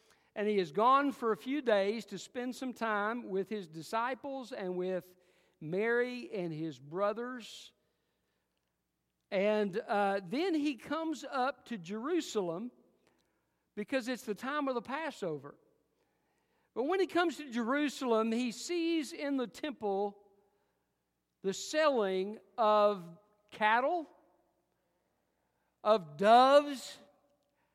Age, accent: 50-69, American